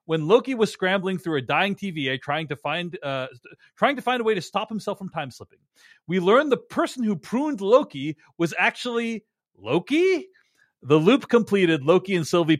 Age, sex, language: 30-49, male, English